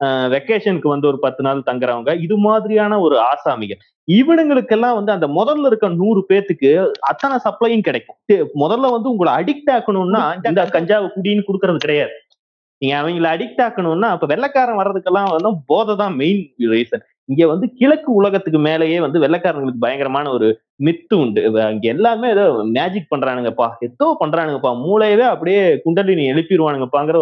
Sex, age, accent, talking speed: male, 30-49, native, 135 wpm